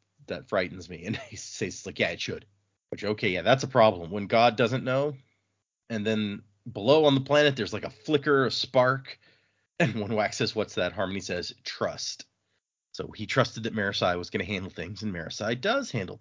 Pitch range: 105-140 Hz